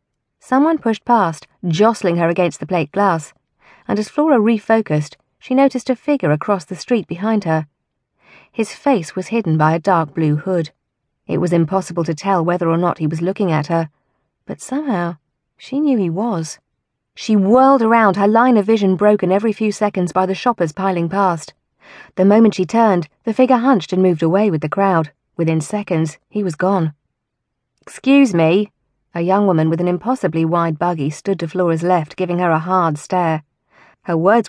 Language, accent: English, British